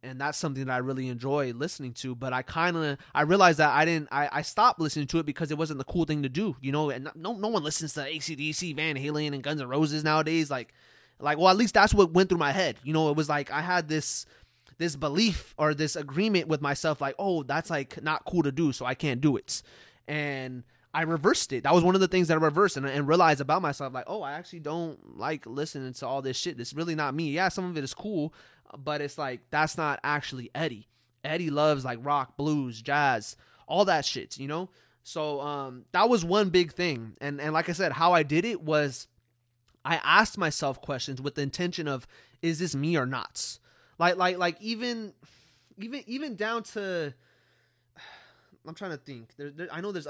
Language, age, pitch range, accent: English, 20-39, 140-175 Hz, American